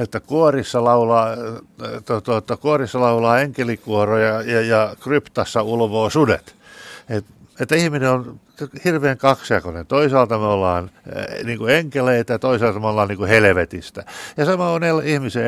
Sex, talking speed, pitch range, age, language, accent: male, 110 wpm, 110-140 Hz, 60-79, Finnish, native